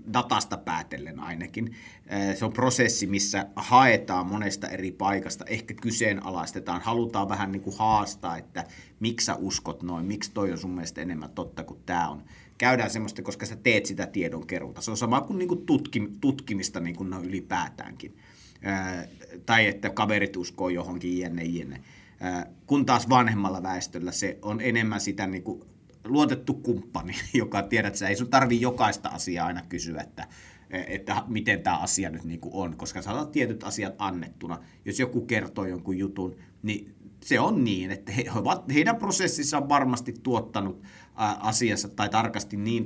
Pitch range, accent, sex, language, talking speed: 95-115 Hz, native, male, Finnish, 150 wpm